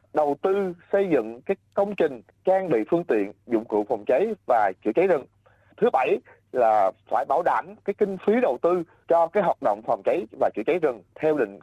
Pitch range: 155-210 Hz